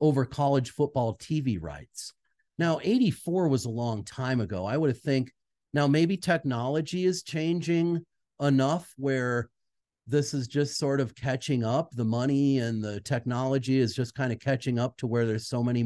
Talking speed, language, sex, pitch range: 175 wpm, English, male, 120-155 Hz